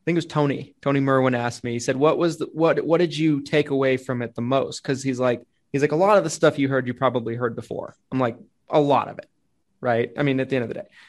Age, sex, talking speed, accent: 20-39, male, 300 wpm, American